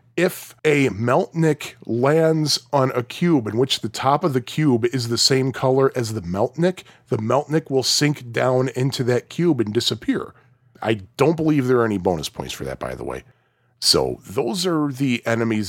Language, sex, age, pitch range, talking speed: English, male, 40-59, 115-155 Hz, 185 wpm